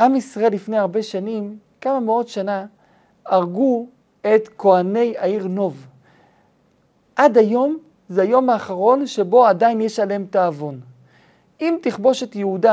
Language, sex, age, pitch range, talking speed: Hebrew, male, 40-59, 190-245 Hz, 130 wpm